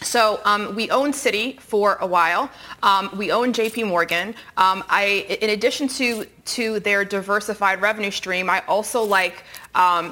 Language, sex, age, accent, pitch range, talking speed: English, female, 30-49, American, 180-210 Hz, 160 wpm